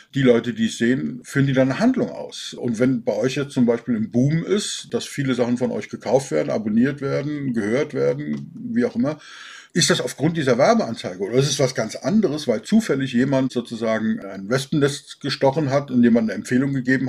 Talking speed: 205 wpm